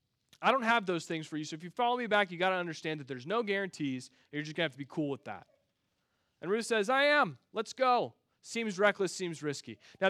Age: 30-49